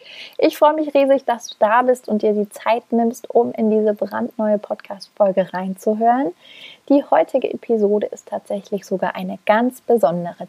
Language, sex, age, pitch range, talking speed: German, female, 30-49, 195-235 Hz, 160 wpm